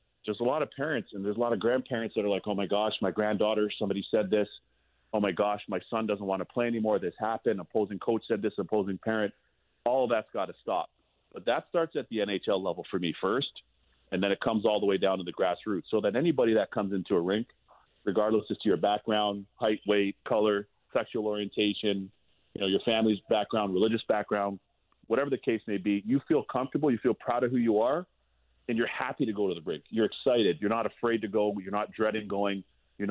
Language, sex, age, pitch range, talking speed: English, male, 30-49, 95-110 Hz, 230 wpm